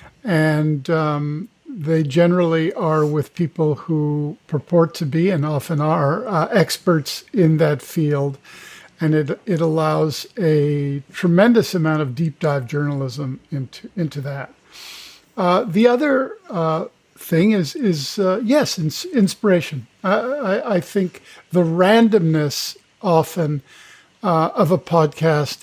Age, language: 50-69, English